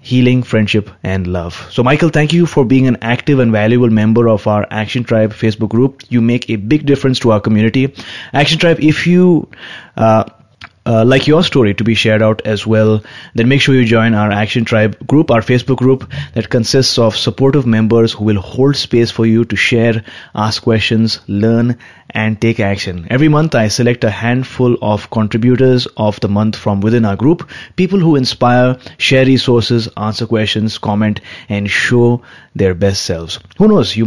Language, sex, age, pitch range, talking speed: English, male, 20-39, 105-130 Hz, 190 wpm